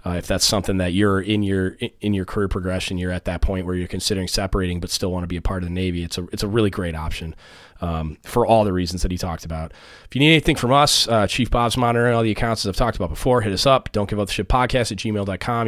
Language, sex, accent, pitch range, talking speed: English, male, American, 90-110 Hz, 290 wpm